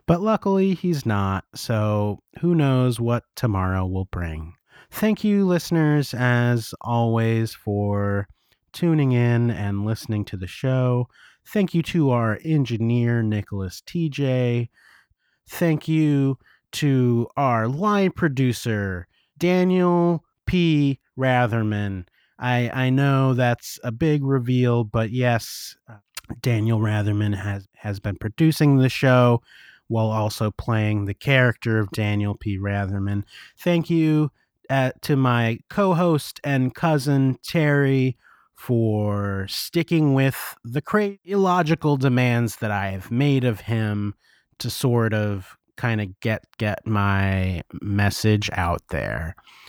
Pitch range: 105-150 Hz